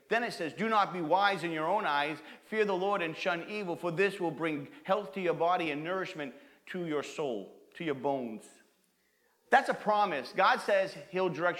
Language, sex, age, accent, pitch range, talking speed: English, male, 40-59, American, 170-220 Hz, 205 wpm